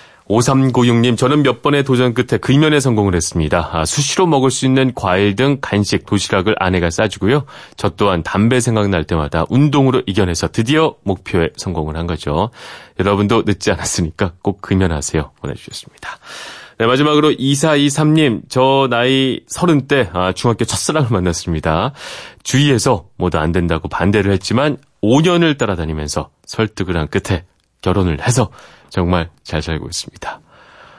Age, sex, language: 30-49, male, Korean